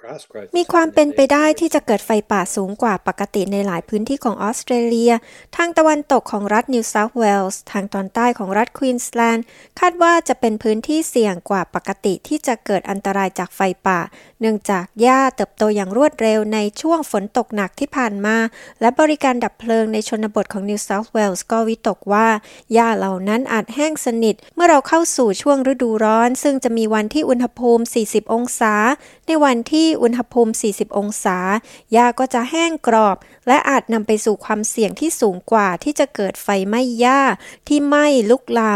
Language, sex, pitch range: Thai, female, 210-255 Hz